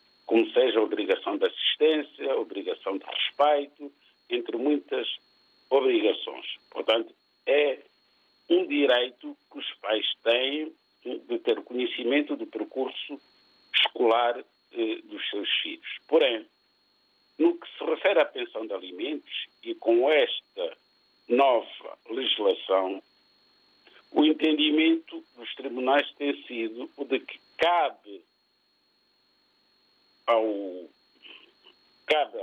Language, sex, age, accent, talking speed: Portuguese, male, 60-79, Brazilian, 105 wpm